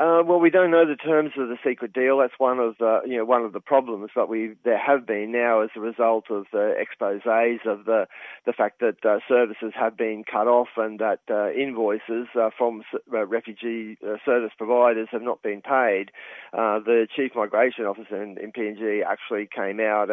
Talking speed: 205 wpm